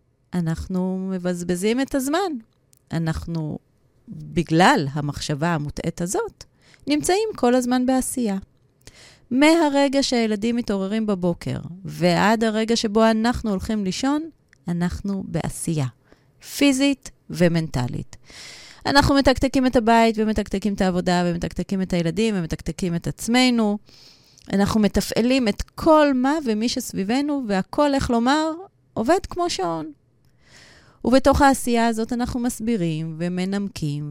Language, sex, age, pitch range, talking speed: Hebrew, female, 30-49, 165-240 Hz, 105 wpm